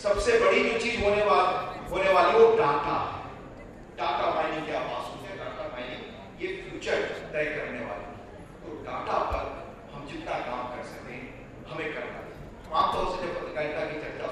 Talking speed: 90 wpm